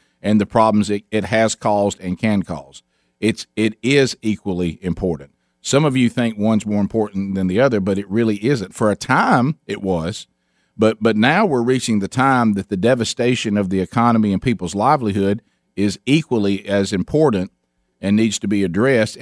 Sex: male